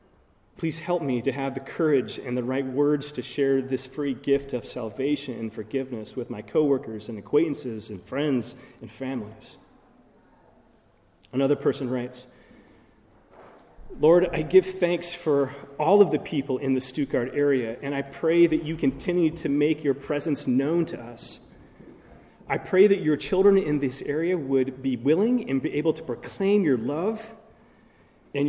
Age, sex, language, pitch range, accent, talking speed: 30-49, male, English, 130-155 Hz, American, 160 wpm